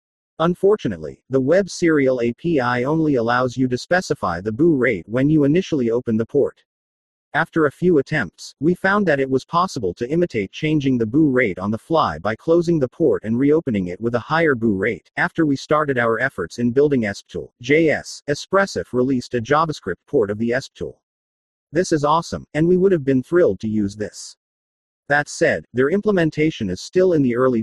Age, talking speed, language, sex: 40-59, 190 wpm, English, male